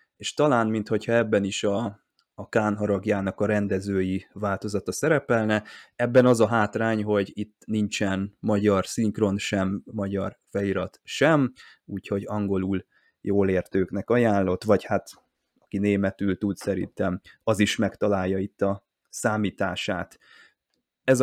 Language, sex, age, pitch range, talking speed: Hungarian, male, 20-39, 100-115 Hz, 120 wpm